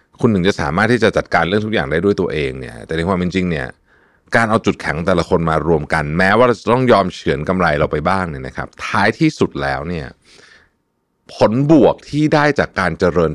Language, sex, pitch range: Thai, male, 80-115 Hz